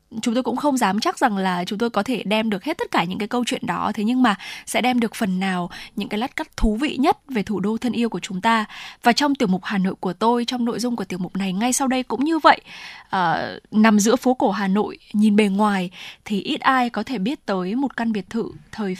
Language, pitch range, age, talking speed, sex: Vietnamese, 200-245 Hz, 10-29, 275 wpm, female